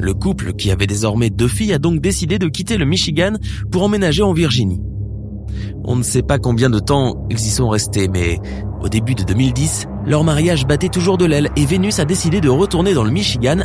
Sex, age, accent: male, 20-39, French